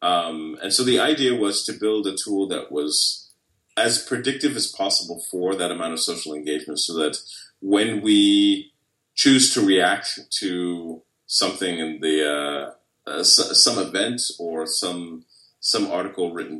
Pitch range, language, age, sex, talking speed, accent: 80-110 Hz, English, 30-49, male, 150 wpm, American